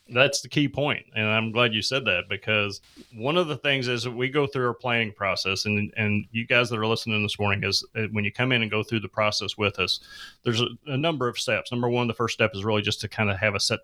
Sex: male